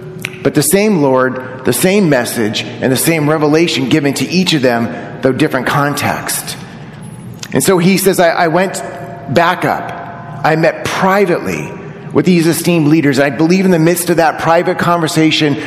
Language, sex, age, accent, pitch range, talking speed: English, male, 30-49, American, 140-175 Hz, 170 wpm